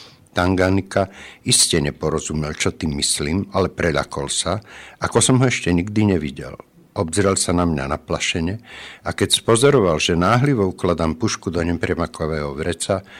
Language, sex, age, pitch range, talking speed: Slovak, male, 60-79, 80-100 Hz, 140 wpm